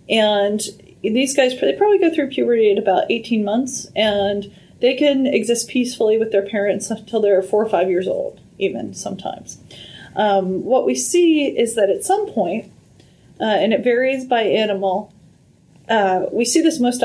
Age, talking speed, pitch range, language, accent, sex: 30-49, 175 wpm, 195-240 Hz, English, American, female